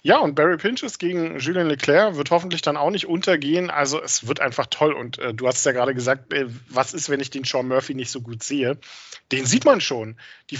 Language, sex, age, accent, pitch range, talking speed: German, male, 40-59, German, 130-160 Hz, 240 wpm